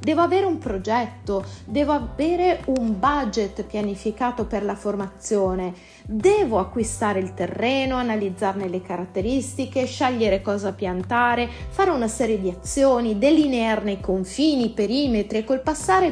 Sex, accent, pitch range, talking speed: female, native, 190-285 Hz, 130 wpm